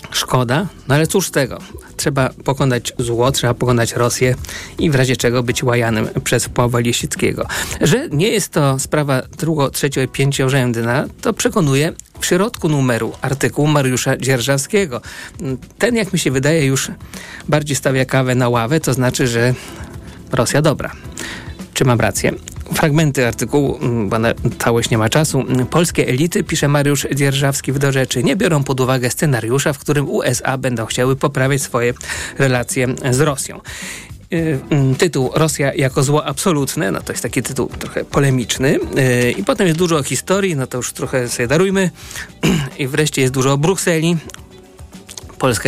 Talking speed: 160 wpm